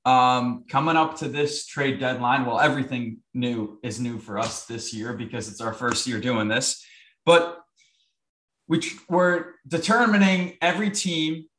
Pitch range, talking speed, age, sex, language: 110-145 Hz, 145 wpm, 20-39, male, English